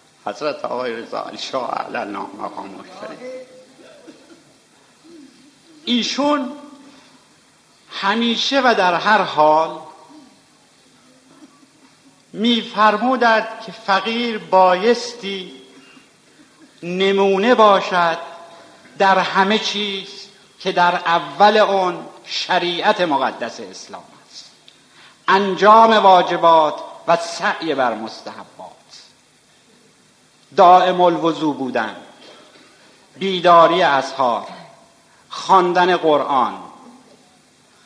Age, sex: 50-69, male